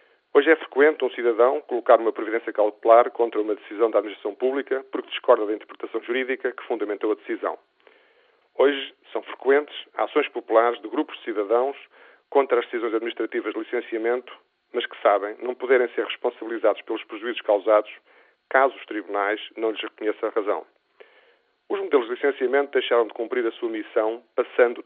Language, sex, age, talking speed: Portuguese, male, 40-59, 165 wpm